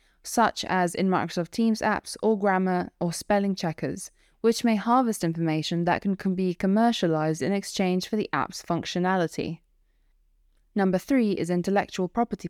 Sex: female